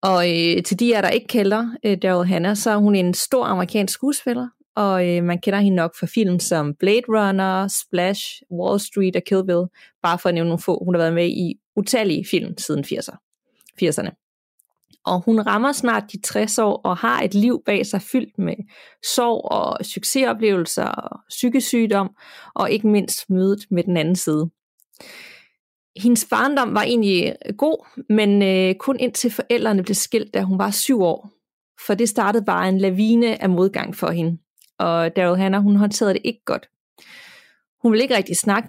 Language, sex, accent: Danish, female, native